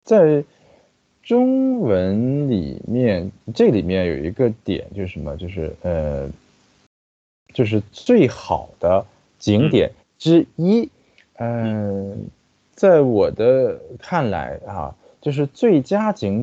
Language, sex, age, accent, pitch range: Japanese, male, 20-39, Chinese, 90-140 Hz